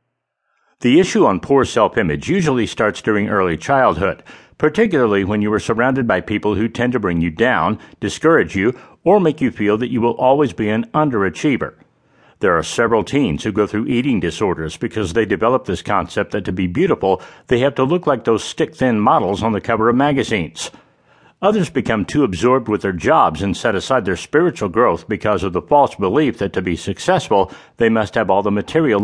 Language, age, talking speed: English, 60-79, 195 wpm